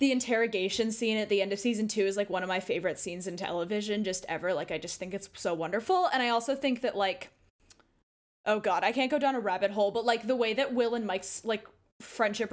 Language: English